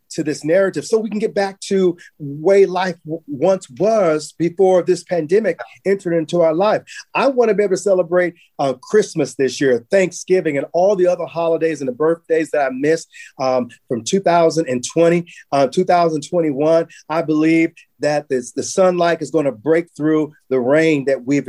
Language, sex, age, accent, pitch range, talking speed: English, male, 40-59, American, 150-195 Hz, 180 wpm